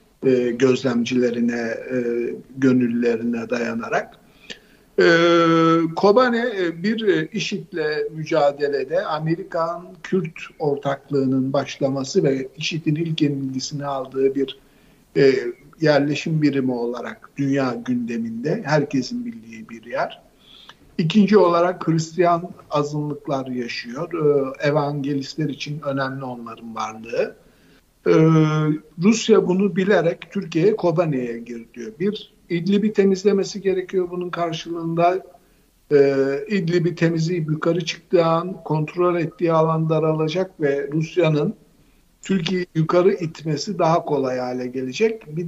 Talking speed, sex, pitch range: 90 wpm, male, 140-180 Hz